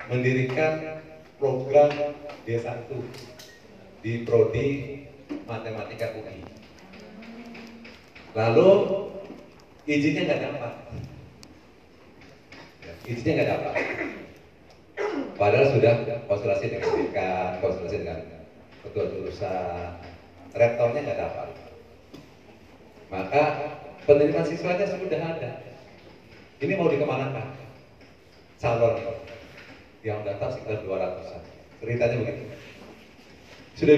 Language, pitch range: Malay, 120-155 Hz